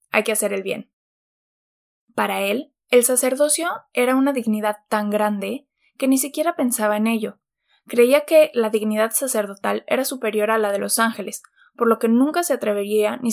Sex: female